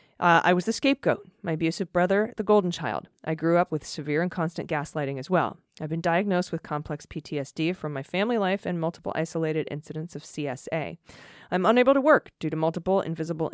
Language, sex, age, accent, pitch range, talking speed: English, female, 20-39, American, 155-185 Hz, 200 wpm